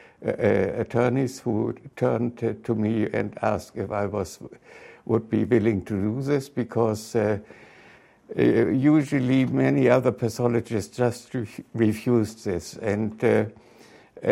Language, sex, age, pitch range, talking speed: English, male, 60-79, 110-120 Hz, 115 wpm